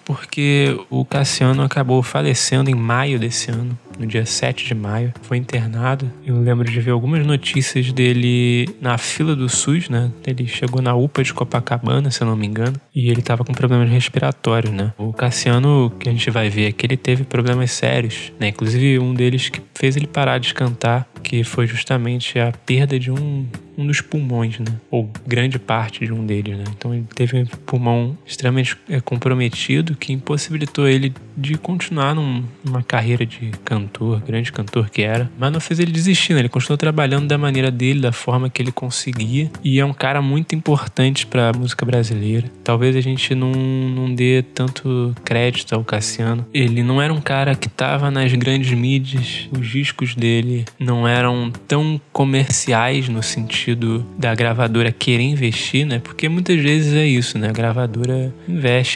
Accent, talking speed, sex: Brazilian, 180 wpm, male